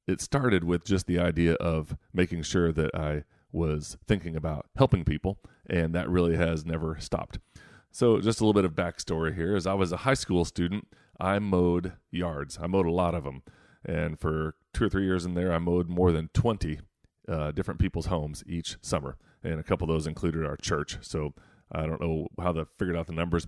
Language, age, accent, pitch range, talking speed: English, 30-49, American, 80-95 Hz, 210 wpm